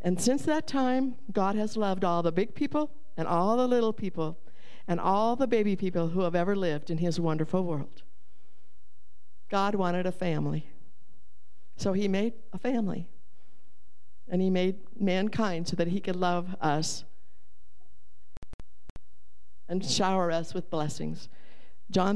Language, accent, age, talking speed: English, American, 60-79, 145 wpm